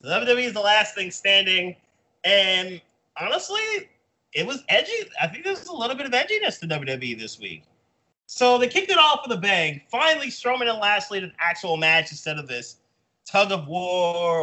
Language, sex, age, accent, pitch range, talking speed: English, male, 30-49, American, 160-235 Hz, 185 wpm